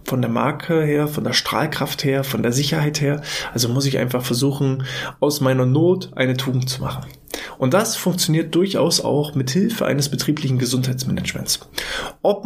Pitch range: 130-155 Hz